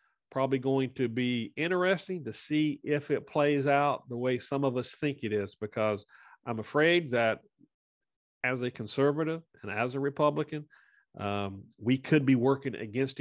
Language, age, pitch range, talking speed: English, 40-59, 120-155 Hz, 165 wpm